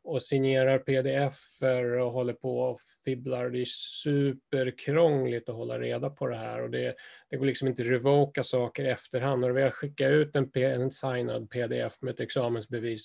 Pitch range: 120-135 Hz